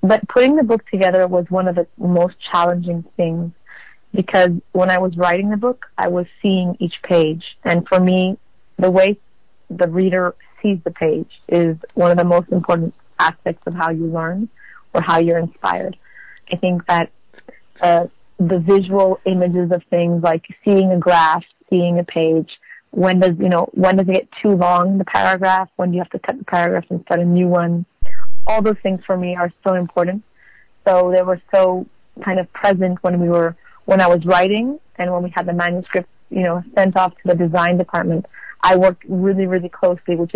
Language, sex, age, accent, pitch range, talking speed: English, female, 30-49, American, 170-185 Hz, 195 wpm